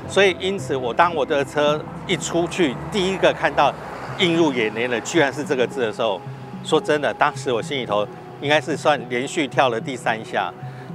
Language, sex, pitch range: Chinese, male, 130-170 Hz